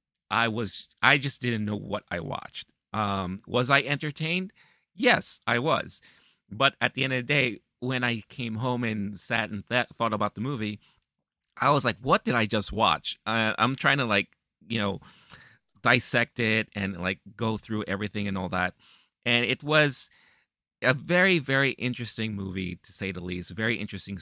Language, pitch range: English, 95-120 Hz